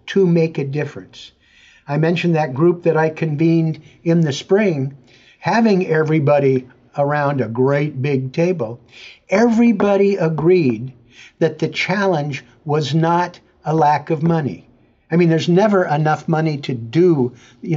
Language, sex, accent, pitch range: English, male, American, 135-175 Hz